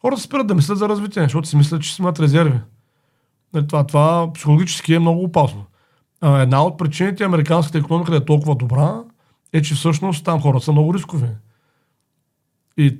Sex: male